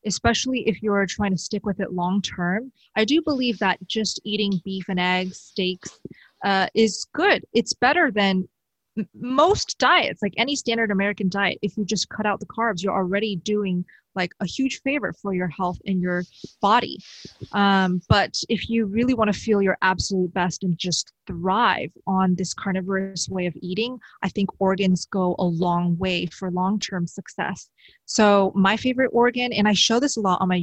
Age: 20-39